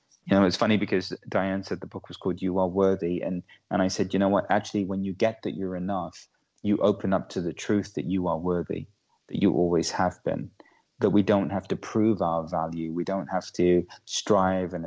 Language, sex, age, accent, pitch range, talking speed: English, male, 30-49, British, 90-100 Hz, 230 wpm